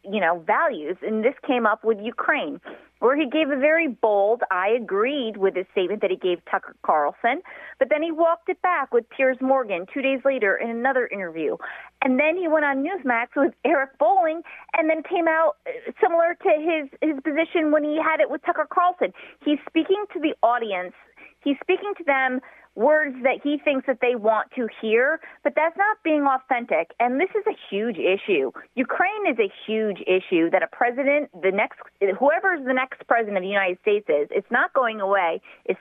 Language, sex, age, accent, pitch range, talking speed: English, female, 40-59, American, 220-320 Hz, 200 wpm